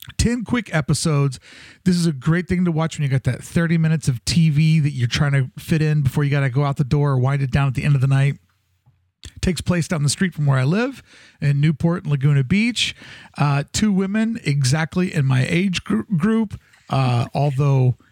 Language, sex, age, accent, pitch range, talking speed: English, male, 40-59, American, 140-185 Hz, 220 wpm